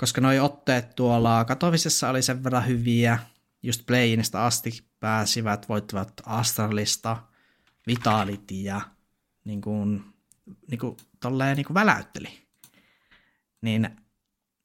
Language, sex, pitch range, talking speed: Finnish, male, 110-125 Hz, 95 wpm